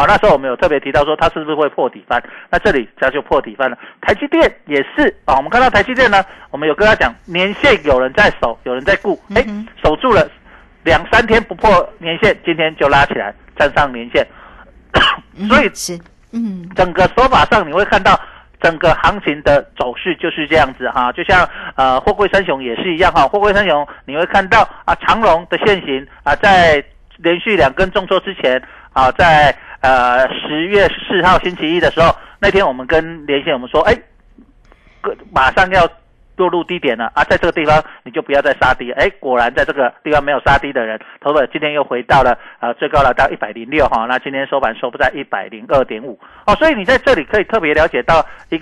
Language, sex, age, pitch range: Chinese, male, 50-69, 140-195 Hz